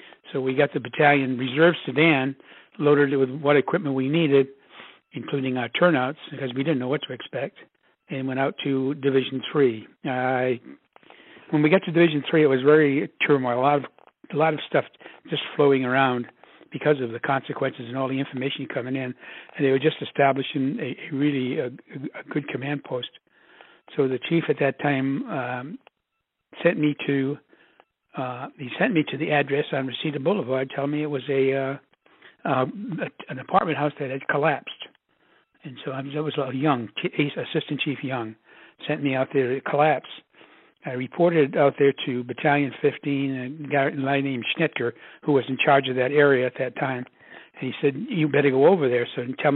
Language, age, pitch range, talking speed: English, 60-79, 130-150 Hz, 185 wpm